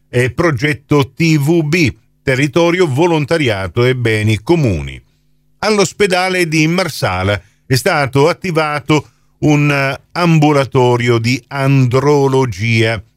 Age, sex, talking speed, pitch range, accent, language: 50-69, male, 80 wpm, 115-155 Hz, native, Italian